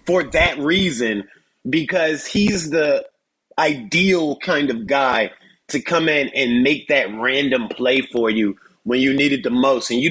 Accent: American